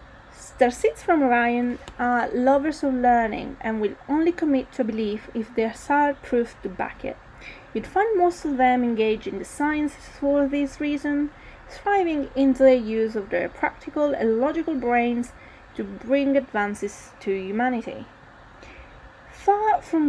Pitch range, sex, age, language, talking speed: 220-290 Hz, female, 30-49, English, 150 wpm